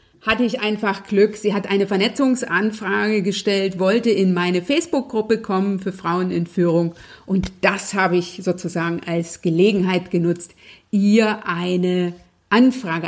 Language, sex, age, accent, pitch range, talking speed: German, female, 50-69, German, 190-250 Hz, 135 wpm